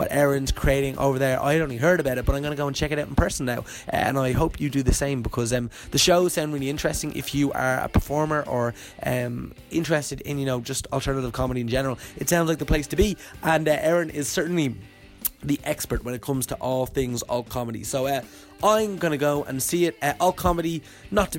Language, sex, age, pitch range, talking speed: English, male, 20-39, 125-160 Hz, 245 wpm